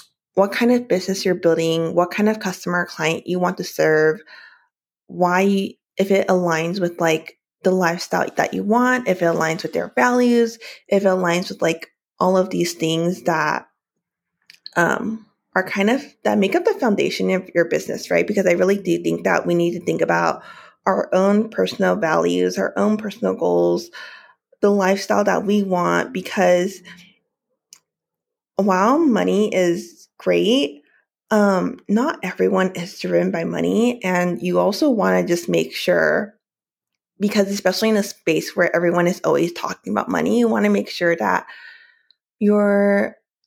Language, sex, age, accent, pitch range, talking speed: English, female, 20-39, American, 175-215 Hz, 165 wpm